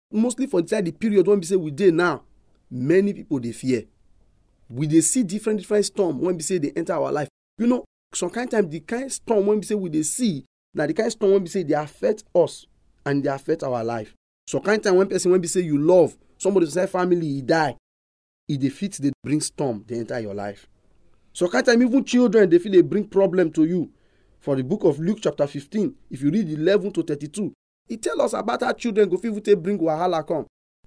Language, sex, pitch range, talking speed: English, male, 120-205 Hz, 245 wpm